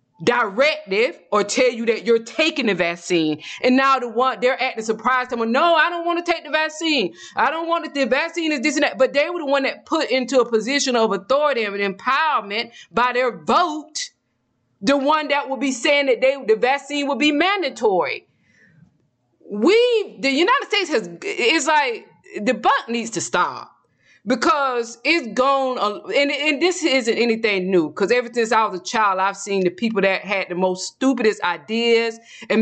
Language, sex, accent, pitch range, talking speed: English, female, American, 205-280 Hz, 195 wpm